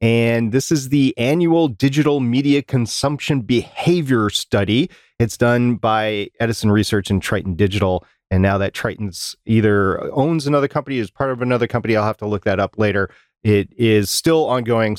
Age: 30-49